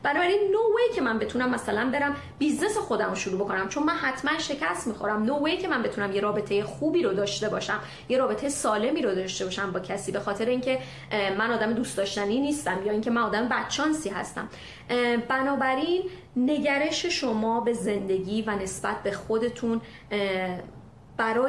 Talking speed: 165 wpm